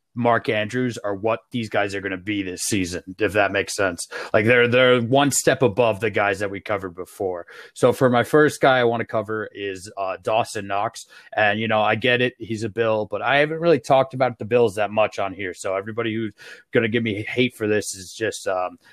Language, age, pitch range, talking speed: English, 30-49, 100-120 Hz, 230 wpm